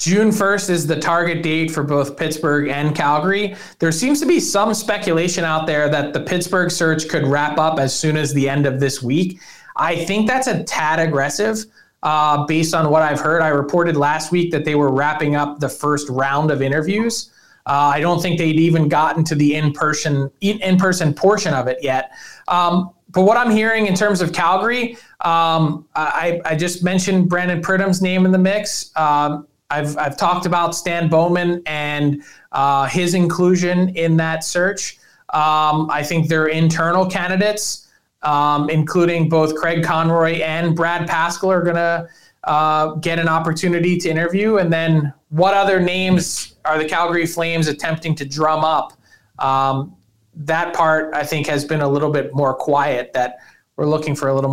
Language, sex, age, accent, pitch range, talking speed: English, male, 20-39, American, 150-180 Hz, 180 wpm